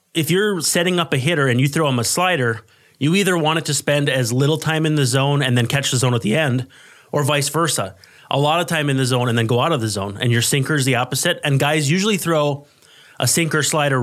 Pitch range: 125-160 Hz